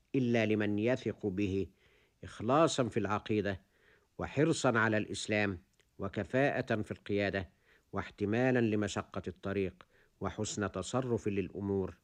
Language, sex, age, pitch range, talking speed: Arabic, male, 50-69, 100-135 Hz, 95 wpm